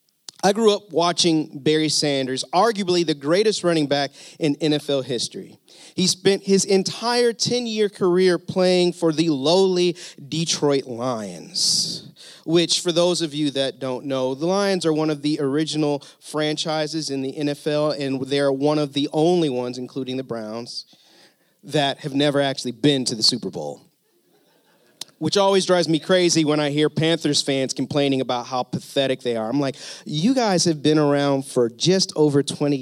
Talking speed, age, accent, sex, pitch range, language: 165 wpm, 30-49, American, male, 135-175 Hz, English